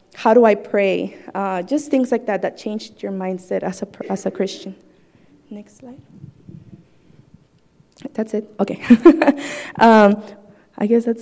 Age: 20-39